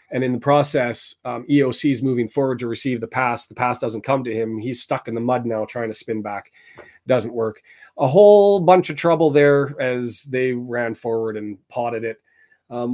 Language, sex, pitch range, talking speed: English, male, 120-150 Hz, 210 wpm